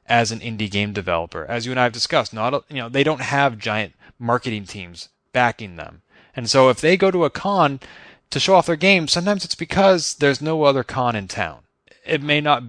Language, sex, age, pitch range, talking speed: English, male, 30-49, 110-145 Hz, 225 wpm